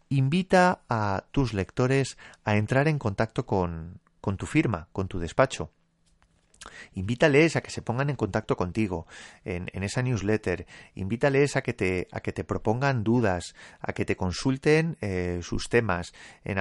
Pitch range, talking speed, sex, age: 95-130 Hz, 160 wpm, male, 30-49